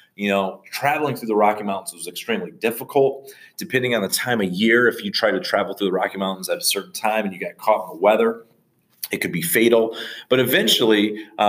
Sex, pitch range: male, 110-150 Hz